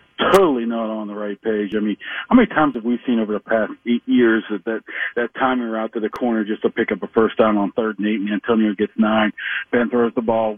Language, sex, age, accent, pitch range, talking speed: English, male, 50-69, American, 115-155 Hz, 260 wpm